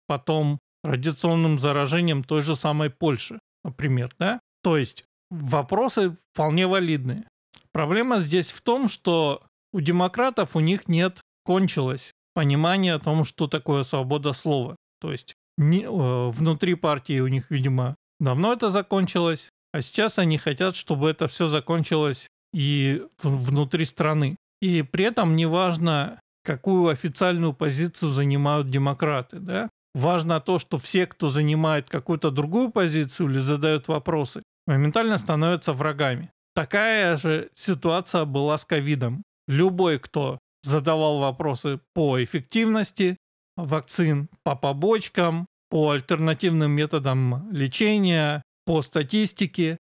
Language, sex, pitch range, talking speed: Russian, male, 145-180 Hz, 125 wpm